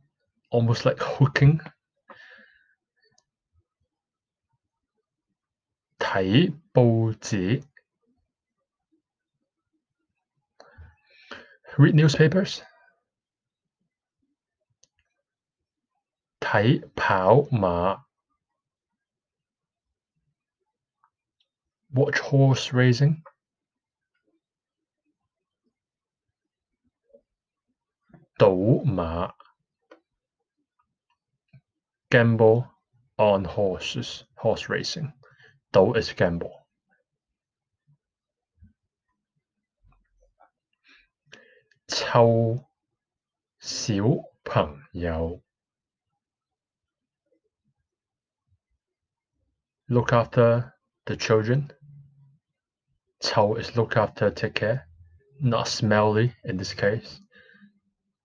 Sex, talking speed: male, 40 wpm